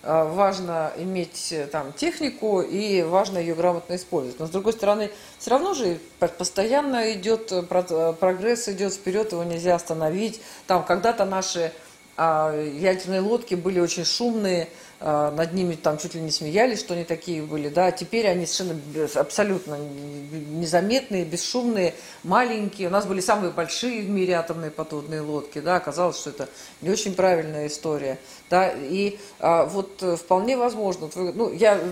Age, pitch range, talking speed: 40-59, 160-200 Hz, 145 wpm